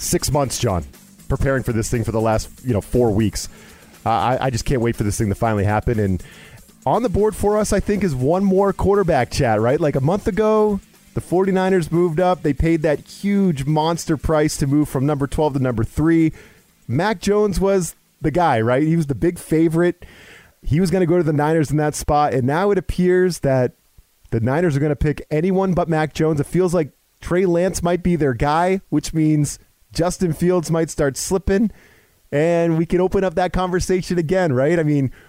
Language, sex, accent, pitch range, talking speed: English, male, American, 135-190 Hz, 215 wpm